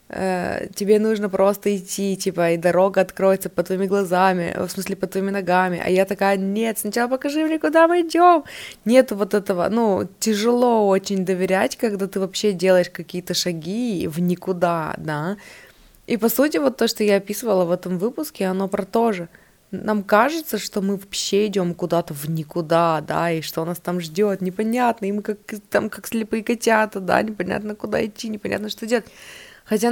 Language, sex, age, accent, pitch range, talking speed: Russian, female, 20-39, native, 175-215 Hz, 175 wpm